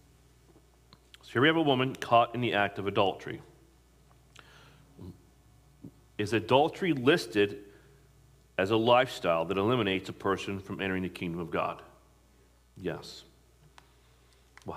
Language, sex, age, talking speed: English, male, 40-59, 120 wpm